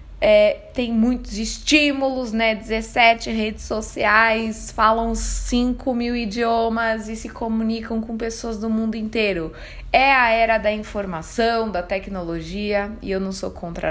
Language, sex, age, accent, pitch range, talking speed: Portuguese, female, 20-39, Brazilian, 210-255 Hz, 135 wpm